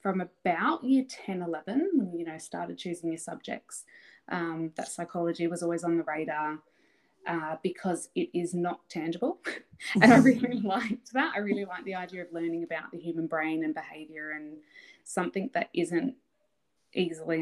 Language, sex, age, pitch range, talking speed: English, female, 20-39, 165-220 Hz, 170 wpm